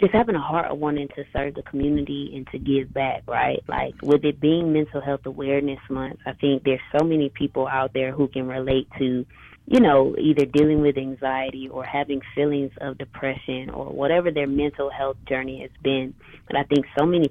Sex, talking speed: female, 205 wpm